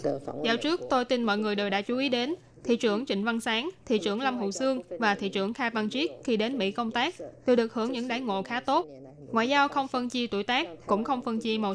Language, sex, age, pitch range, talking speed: Vietnamese, female, 10-29, 210-255 Hz, 265 wpm